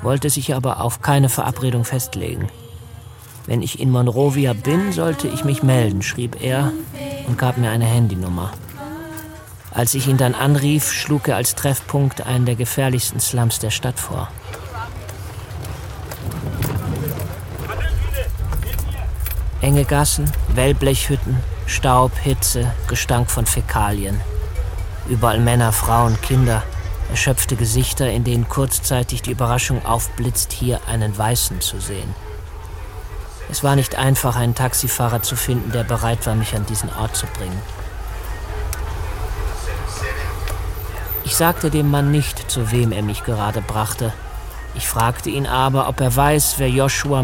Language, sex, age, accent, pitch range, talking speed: German, male, 40-59, German, 95-130 Hz, 130 wpm